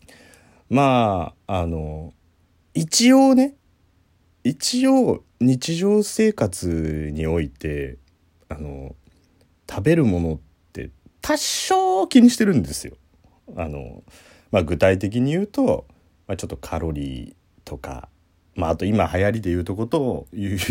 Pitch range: 80-115 Hz